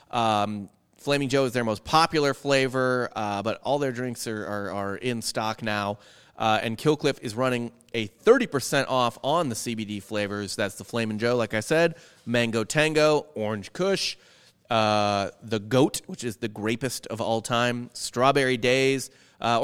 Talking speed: 170 wpm